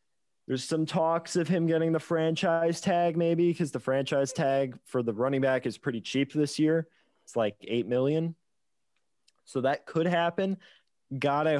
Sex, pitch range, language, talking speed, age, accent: male, 115-145 Hz, English, 170 wpm, 20-39, American